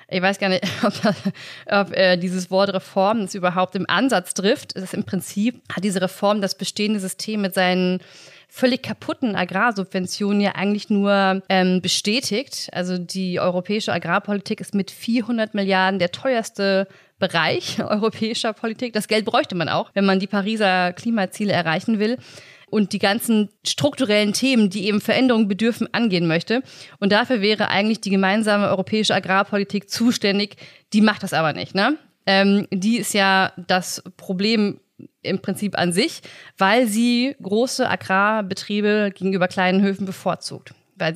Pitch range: 185-215 Hz